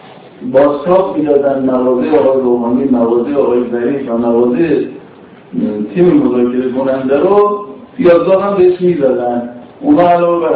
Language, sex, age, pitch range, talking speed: Persian, male, 50-69, 135-180 Hz, 135 wpm